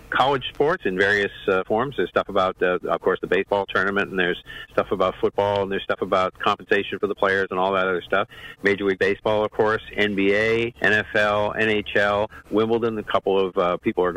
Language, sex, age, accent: English, male, 50-69, American